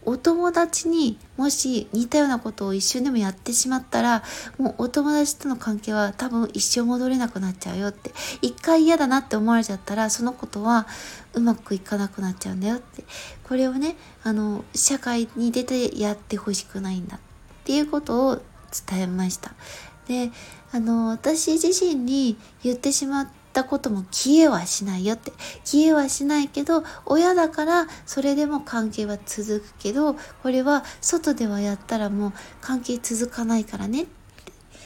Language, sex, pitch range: Japanese, female, 215-295 Hz